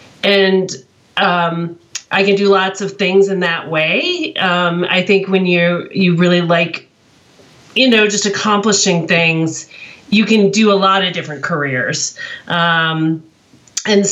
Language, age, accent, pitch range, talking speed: English, 40-59, American, 175-210 Hz, 145 wpm